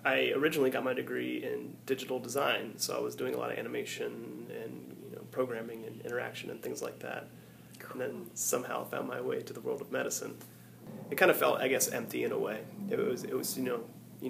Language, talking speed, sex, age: English, 225 wpm, male, 30-49